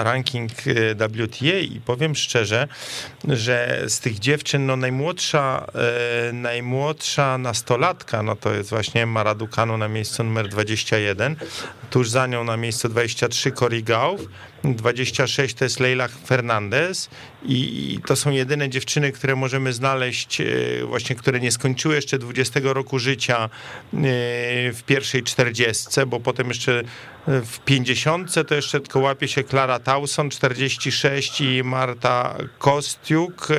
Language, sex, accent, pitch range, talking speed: Polish, male, native, 115-135 Hz, 125 wpm